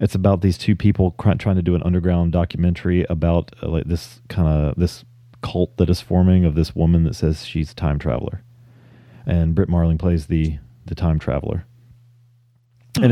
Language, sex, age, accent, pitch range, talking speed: English, male, 30-49, American, 85-110 Hz, 190 wpm